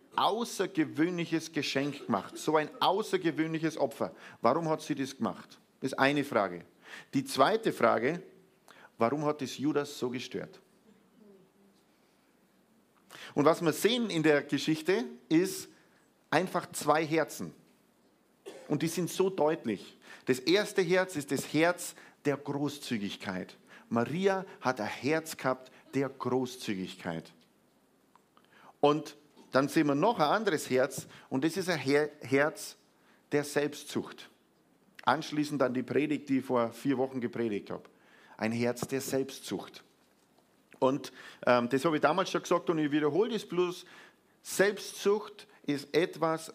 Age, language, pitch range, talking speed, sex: 50-69, German, 135-170 Hz, 130 wpm, male